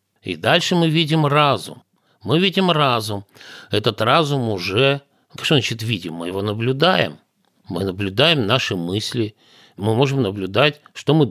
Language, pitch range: Russian, 100-140 Hz